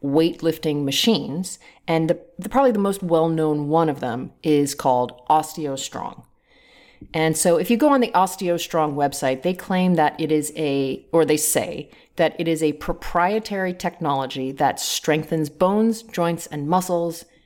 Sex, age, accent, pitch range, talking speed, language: female, 30-49, American, 150-185 Hz, 155 wpm, English